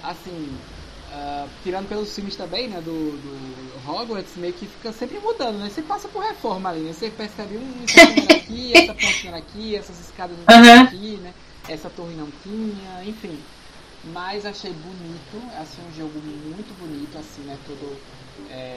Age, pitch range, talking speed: 20-39, 140-205 Hz, 160 wpm